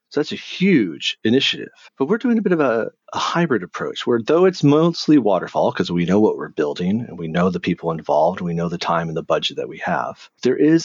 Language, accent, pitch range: English, American, 95-135 Hz